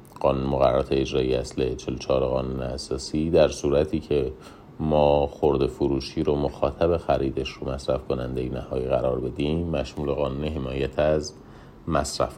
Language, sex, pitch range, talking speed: Persian, male, 65-85 Hz, 130 wpm